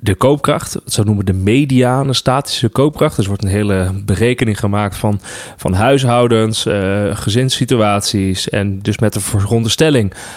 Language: Dutch